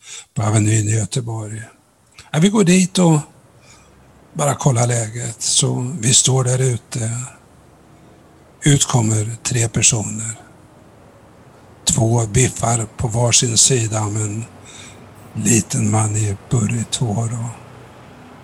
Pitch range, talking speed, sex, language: 105-125 Hz, 105 wpm, male, Swedish